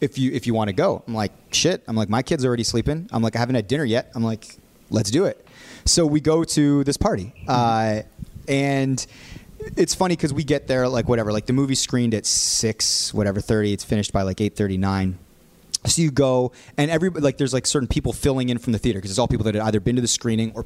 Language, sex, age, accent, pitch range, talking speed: English, male, 30-49, American, 105-130 Hz, 245 wpm